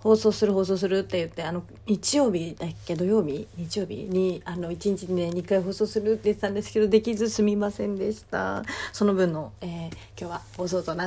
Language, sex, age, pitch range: Japanese, female, 30-49, 140-205 Hz